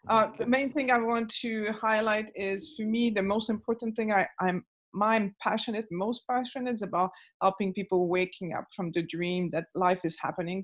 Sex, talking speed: female, 190 wpm